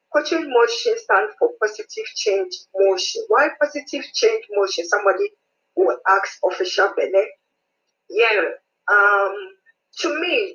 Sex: female